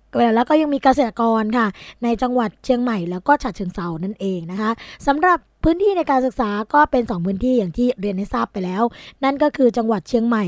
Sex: female